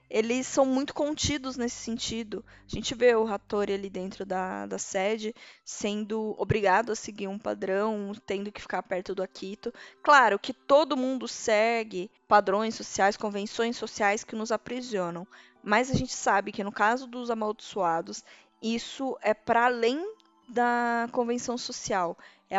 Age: 10-29